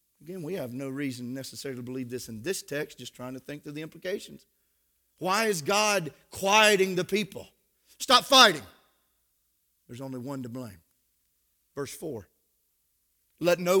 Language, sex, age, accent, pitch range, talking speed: English, male, 40-59, American, 100-160 Hz, 155 wpm